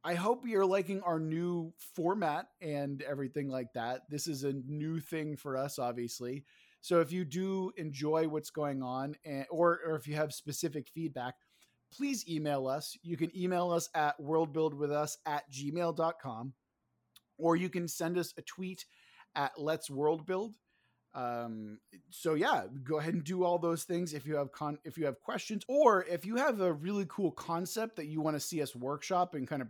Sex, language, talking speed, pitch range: male, English, 185 wpm, 145-175 Hz